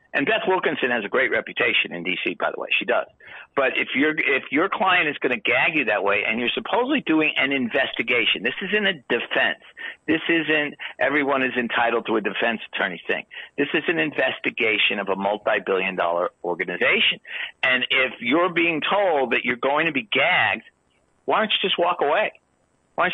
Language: English